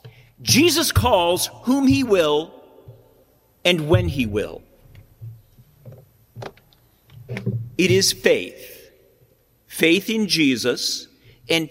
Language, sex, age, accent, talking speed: English, male, 50-69, American, 80 wpm